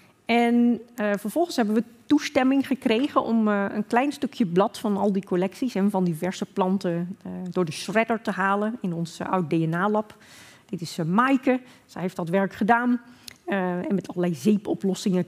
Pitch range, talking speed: 180-230 Hz, 175 wpm